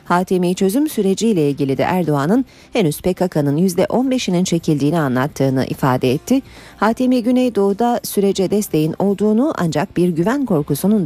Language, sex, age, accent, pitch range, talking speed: Turkish, female, 40-59, native, 155-215 Hz, 120 wpm